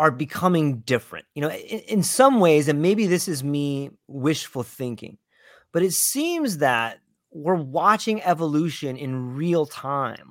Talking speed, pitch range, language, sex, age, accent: 150 wpm, 140-195 Hz, English, male, 30-49, American